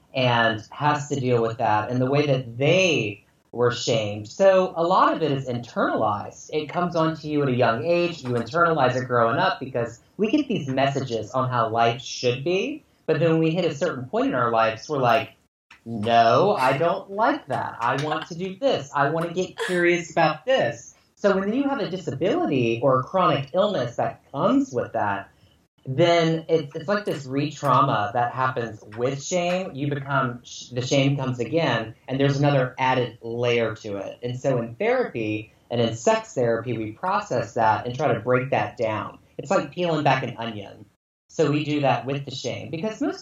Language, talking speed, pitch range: English, 195 wpm, 120-170 Hz